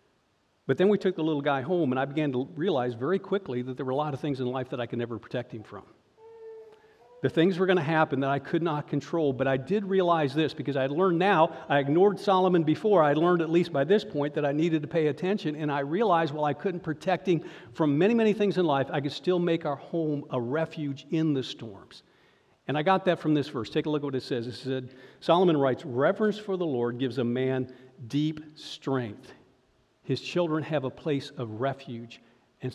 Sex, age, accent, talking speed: male, 50-69, American, 240 wpm